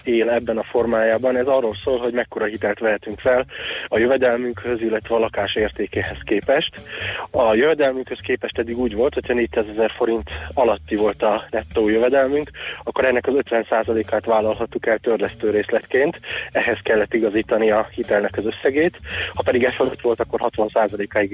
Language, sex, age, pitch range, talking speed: Hungarian, male, 20-39, 110-125 Hz, 155 wpm